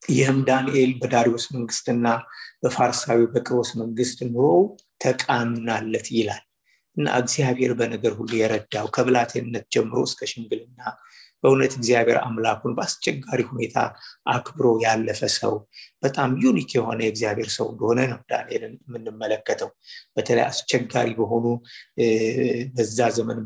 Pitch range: 115-125 Hz